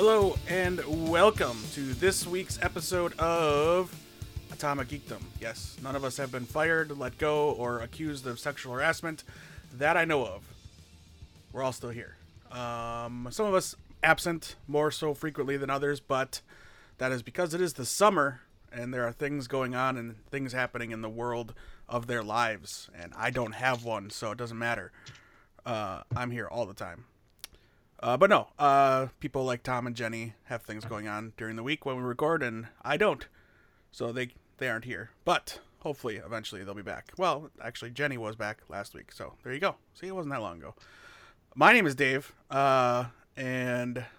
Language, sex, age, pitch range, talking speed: English, male, 30-49, 115-150 Hz, 185 wpm